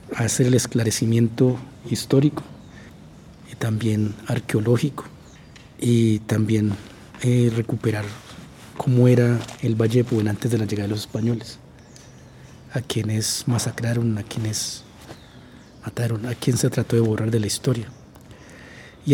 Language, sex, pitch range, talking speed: English, male, 110-125 Hz, 125 wpm